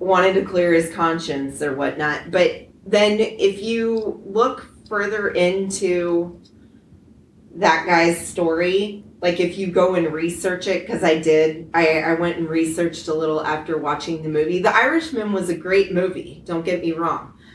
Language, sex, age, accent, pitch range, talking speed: English, female, 30-49, American, 175-245 Hz, 165 wpm